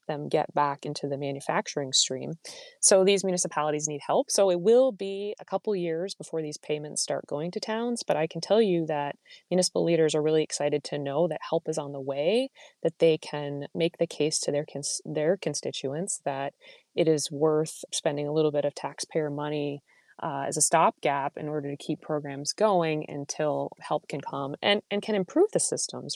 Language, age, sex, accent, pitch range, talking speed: English, 20-39, female, American, 145-185 Hz, 195 wpm